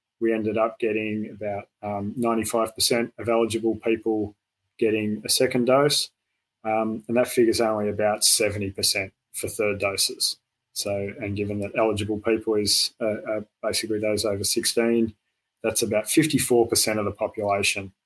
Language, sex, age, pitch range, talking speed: English, male, 20-39, 105-115 Hz, 145 wpm